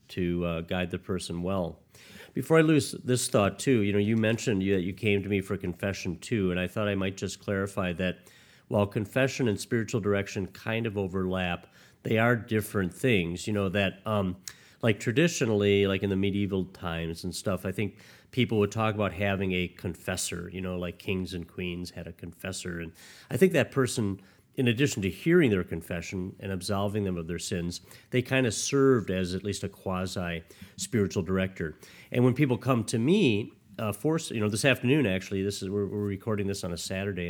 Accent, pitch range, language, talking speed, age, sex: American, 90-115 Hz, English, 200 wpm, 40-59, male